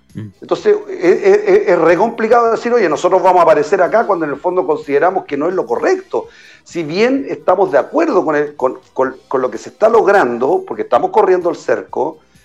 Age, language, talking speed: 40-59, Spanish, 205 wpm